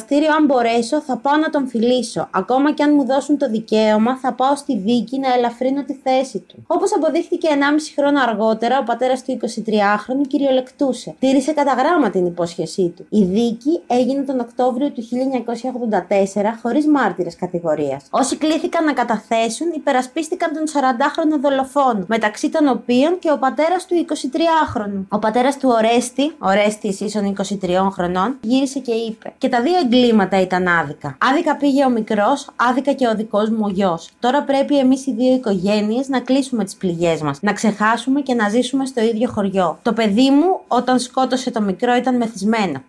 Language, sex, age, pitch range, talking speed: Greek, female, 20-39, 210-275 Hz, 165 wpm